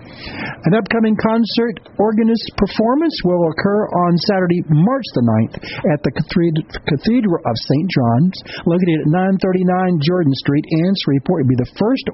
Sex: male